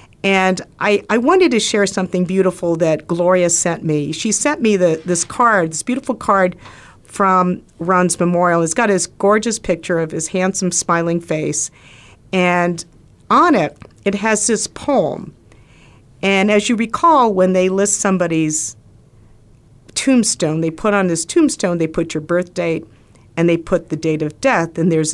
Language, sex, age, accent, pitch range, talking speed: English, female, 50-69, American, 160-205 Hz, 160 wpm